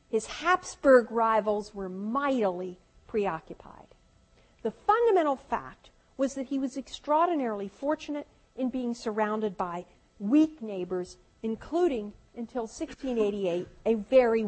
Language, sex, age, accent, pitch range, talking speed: English, female, 50-69, American, 205-275 Hz, 110 wpm